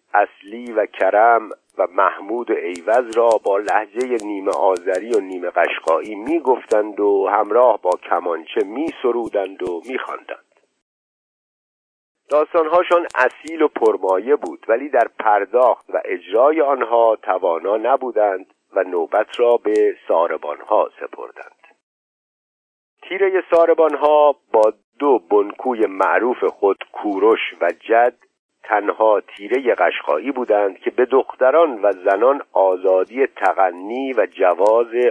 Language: Persian